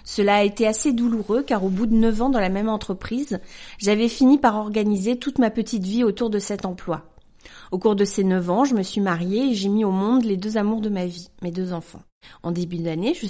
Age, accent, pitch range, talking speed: 40-59, French, 185-235 Hz, 250 wpm